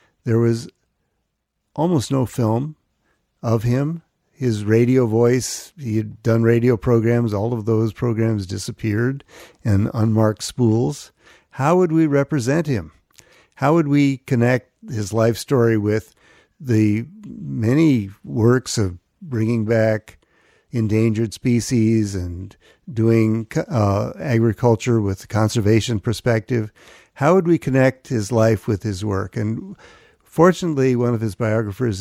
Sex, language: male, English